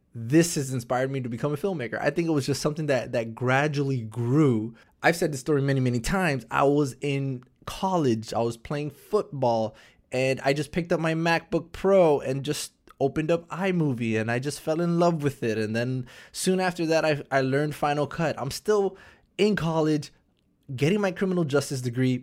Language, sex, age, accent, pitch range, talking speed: English, male, 20-39, American, 120-160 Hz, 195 wpm